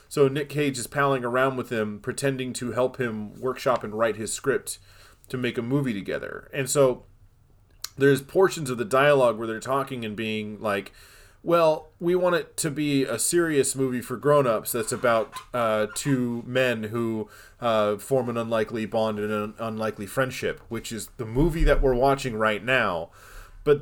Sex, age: male, 20-39